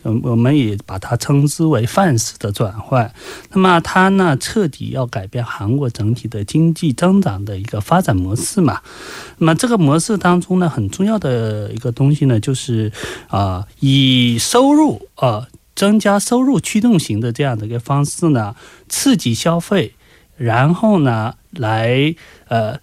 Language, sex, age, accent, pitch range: Korean, male, 30-49, Chinese, 115-170 Hz